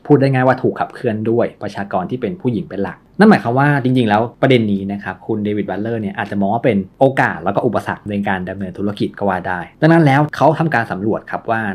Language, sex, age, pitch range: Thai, male, 20-39, 100-135 Hz